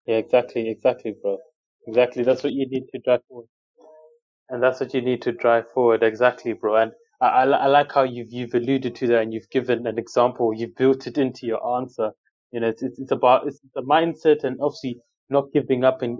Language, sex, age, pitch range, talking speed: English, male, 20-39, 120-145 Hz, 220 wpm